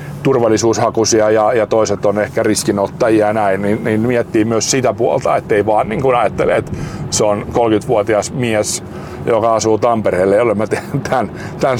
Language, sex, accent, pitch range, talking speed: Finnish, male, native, 105-130 Hz, 165 wpm